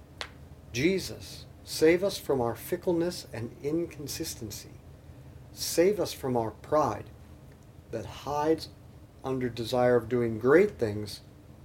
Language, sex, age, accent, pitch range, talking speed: English, male, 40-59, American, 105-145 Hz, 110 wpm